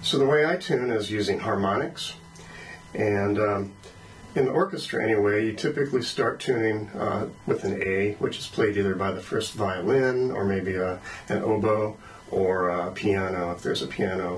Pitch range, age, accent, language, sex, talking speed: 95-120 Hz, 40-59, American, English, male, 170 wpm